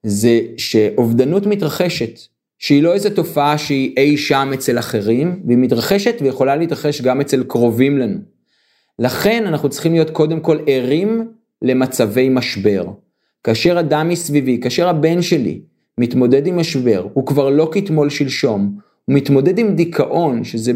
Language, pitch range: Hebrew, 120-165 Hz